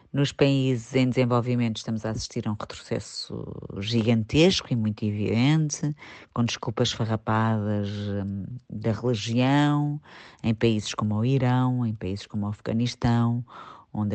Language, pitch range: Portuguese, 110-130 Hz